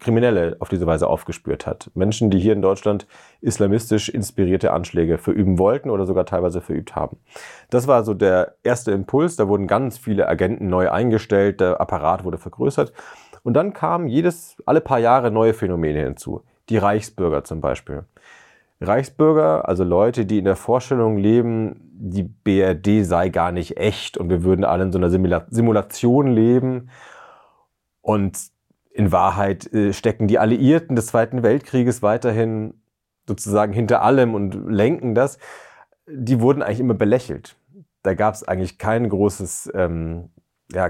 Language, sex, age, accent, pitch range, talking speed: German, male, 30-49, German, 95-115 Hz, 155 wpm